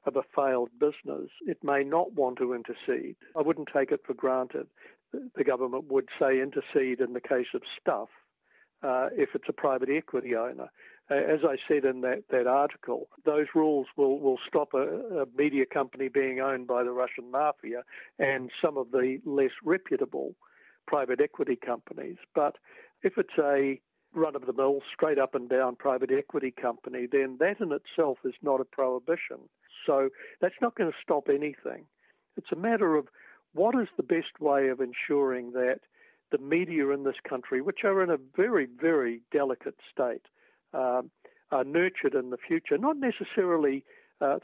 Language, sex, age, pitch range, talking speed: English, male, 60-79, 130-185 Hz, 165 wpm